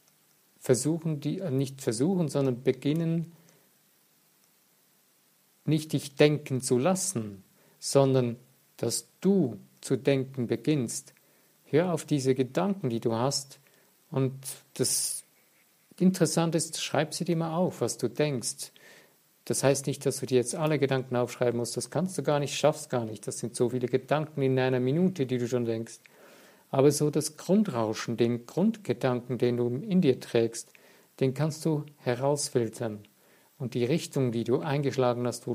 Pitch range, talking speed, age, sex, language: 125-150 Hz, 150 wpm, 50-69, male, German